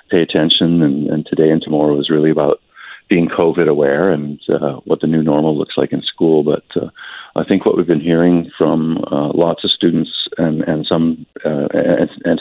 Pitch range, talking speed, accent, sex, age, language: 75-85 Hz, 205 wpm, American, male, 50-69, English